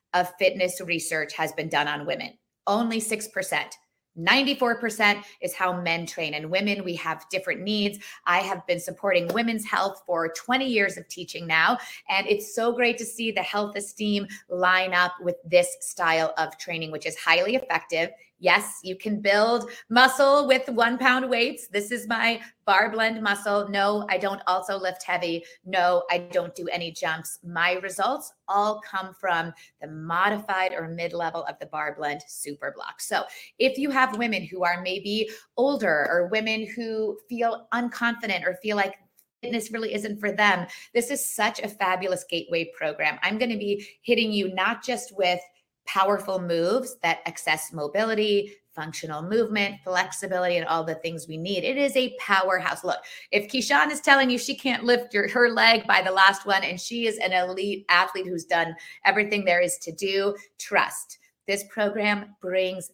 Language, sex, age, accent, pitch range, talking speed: English, female, 20-39, American, 175-220 Hz, 175 wpm